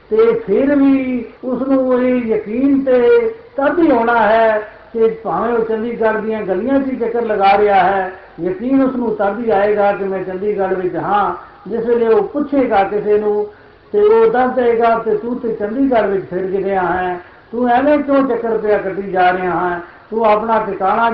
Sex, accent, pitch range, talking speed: male, native, 210-250 Hz, 165 wpm